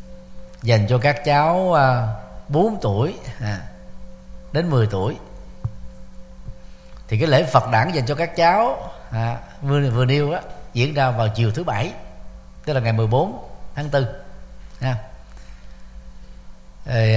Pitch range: 105-135 Hz